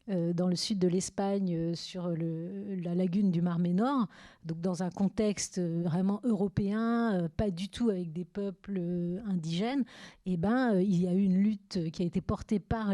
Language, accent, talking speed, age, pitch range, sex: French, French, 175 wpm, 40-59, 175-220 Hz, female